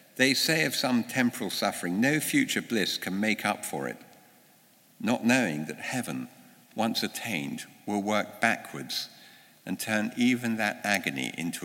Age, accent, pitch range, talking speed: 60-79, British, 90-120 Hz, 150 wpm